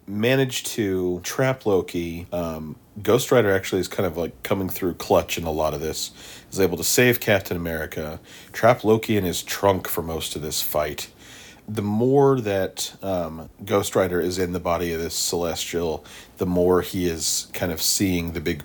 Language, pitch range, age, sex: English, 85-110 Hz, 40-59, male